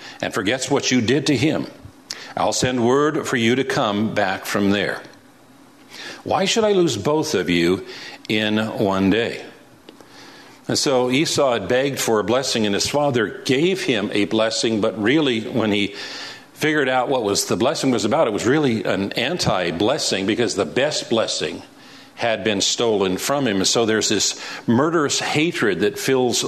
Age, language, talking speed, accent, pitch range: 50-69, English, 170 wpm, American, 105-145 Hz